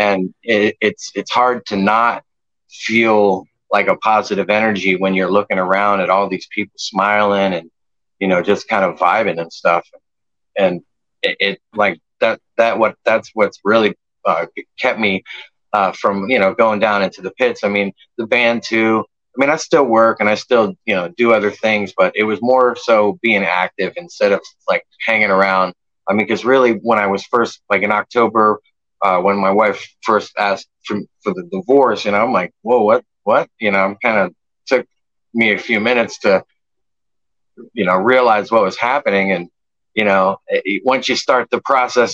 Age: 30-49